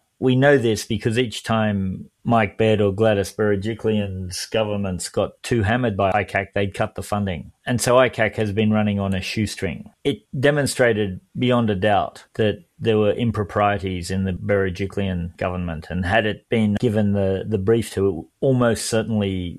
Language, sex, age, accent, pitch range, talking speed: English, male, 30-49, Australian, 95-115 Hz, 170 wpm